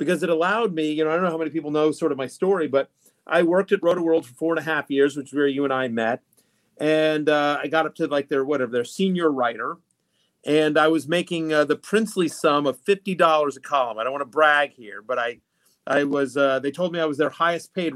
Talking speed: 265 wpm